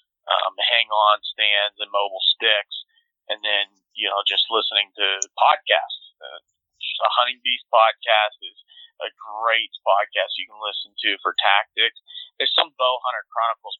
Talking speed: 150 wpm